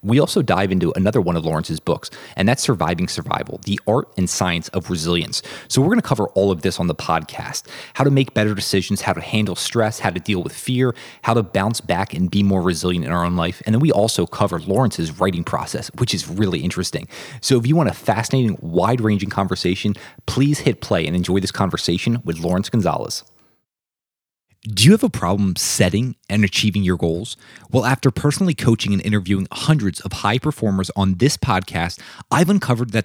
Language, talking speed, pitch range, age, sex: English, 205 wpm, 95-125 Hz, 30-49, male